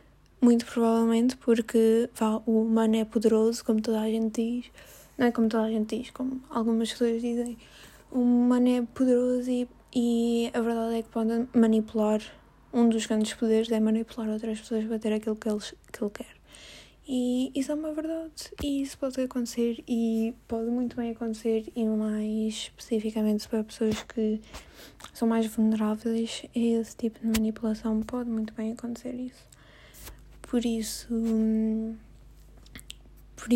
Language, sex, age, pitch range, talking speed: Arabic, female, 20-39, 225-245 Hz, 155 wpm